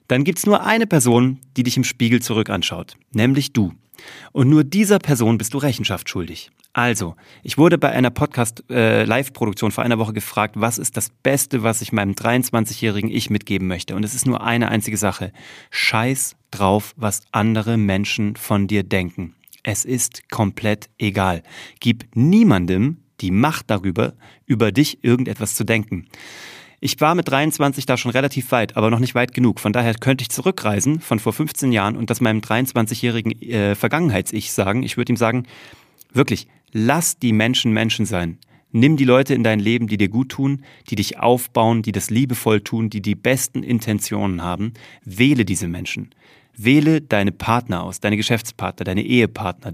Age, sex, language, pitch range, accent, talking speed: 30-49, male, German, 105-130 Hz, German, 175 wpm